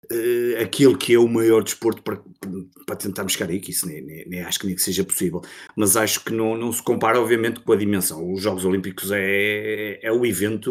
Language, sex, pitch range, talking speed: Portuguese, male, 95-120 Hz, 230 wpm